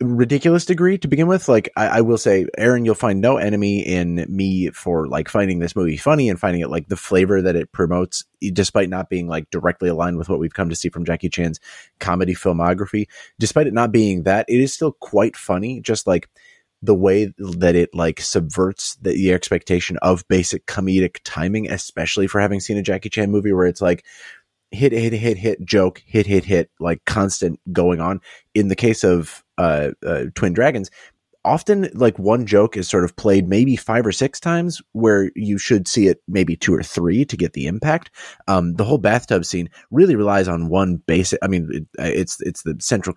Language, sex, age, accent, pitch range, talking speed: English, male, 30-49, American, 90-110 Hz, 205 wpm